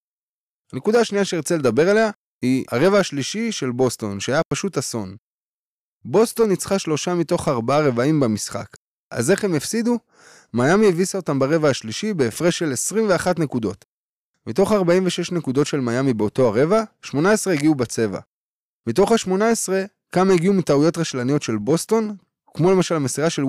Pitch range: 135-195 Hz